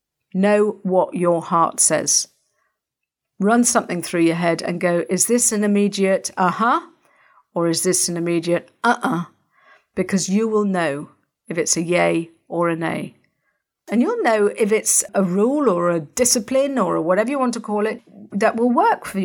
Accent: British